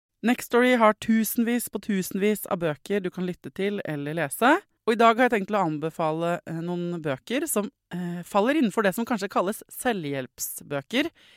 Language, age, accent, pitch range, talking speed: English, 20-39, Swedish, 155-220 Hz, 175 wpm